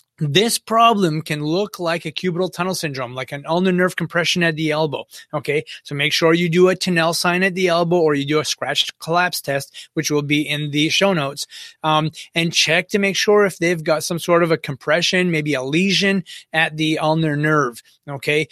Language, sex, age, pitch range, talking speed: English, male, 30-49, 155-195 Hz, 210 wpm